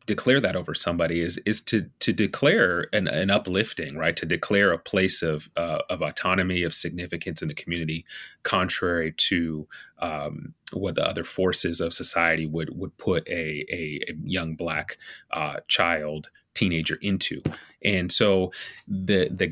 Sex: male